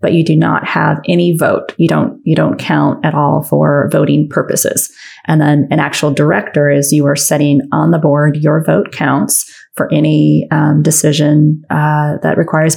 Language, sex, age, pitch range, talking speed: English, female, 20-39, 150-180 Hz, 185 wpm